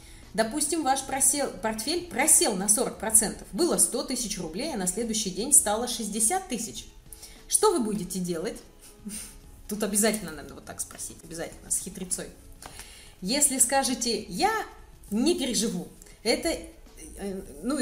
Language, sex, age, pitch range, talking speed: Russian, female, 30-49, 200-270 Hz, 125 wpm